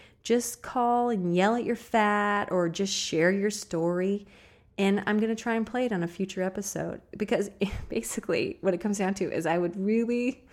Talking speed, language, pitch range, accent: 200 wpm, English, 160-205 Hz, American